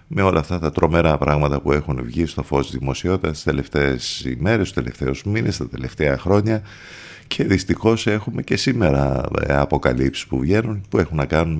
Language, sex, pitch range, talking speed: Greek, male, 75-95 Hz, 175 wpm